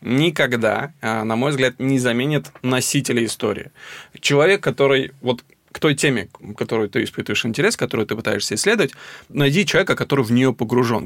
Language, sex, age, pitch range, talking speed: Russian, male, 20-39, 110-140 Hz, 150 wpm